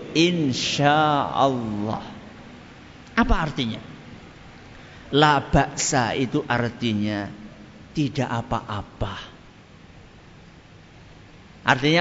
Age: 50-69